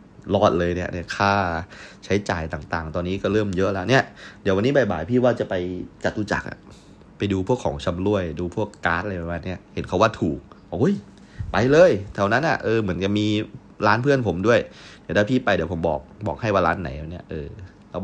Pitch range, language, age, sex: 90-110 Hz, Thai, 30-49, male